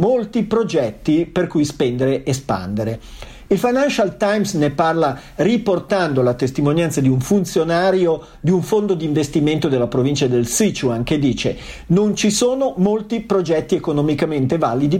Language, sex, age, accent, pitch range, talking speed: Italian, male, 50-69, native, 135-195 Hz, 145 wpm